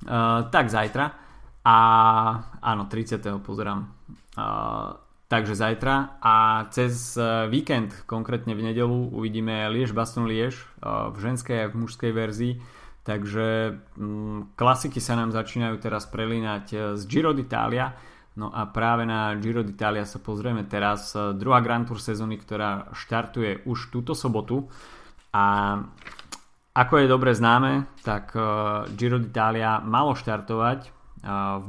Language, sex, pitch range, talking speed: Slovak, male, 105-120 Hz, 125 wpm